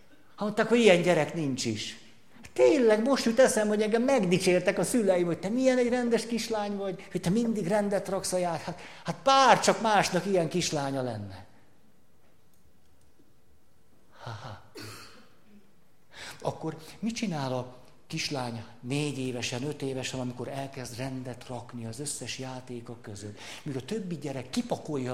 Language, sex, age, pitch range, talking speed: Hungarian, male, 60-79, 120-175 Hz, 150 wpm